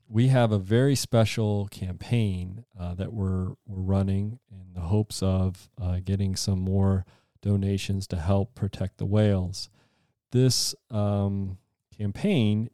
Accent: American